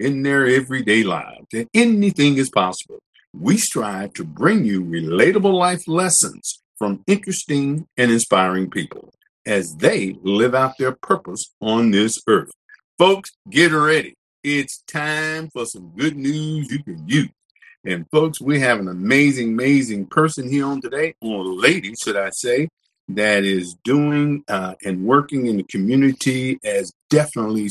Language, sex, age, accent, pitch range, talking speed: English, male, 50-69, American, 105-155 Hz, 150 wpm